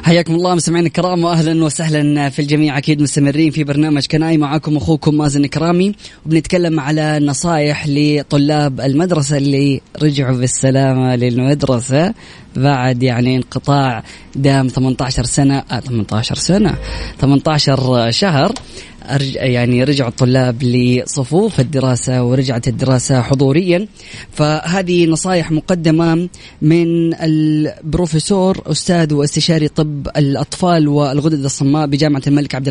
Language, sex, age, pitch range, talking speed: Arabic, female, 20-39, 135-160 Hz, 105 wpm